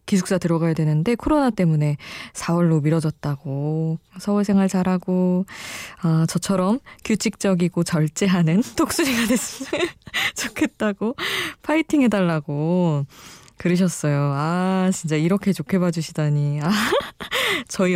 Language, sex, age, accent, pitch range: Korean, female, 20-39, native, 160-210 Hz